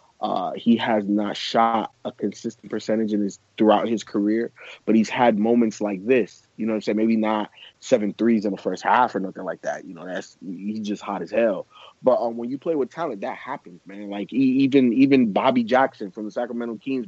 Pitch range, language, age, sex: 110-130 Hz, English, 20-39, male